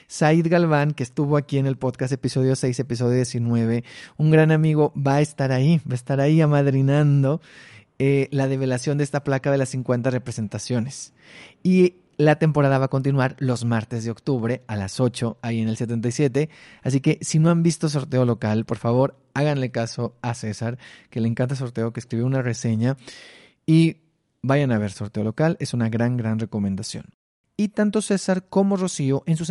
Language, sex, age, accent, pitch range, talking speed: Spanish, male, 30-49, Mexican, 120-155 Hz, 185 wpm